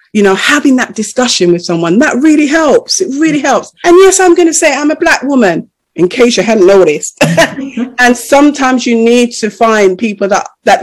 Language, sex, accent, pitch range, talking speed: English, female, British, 190-280 Hz, 205 wpm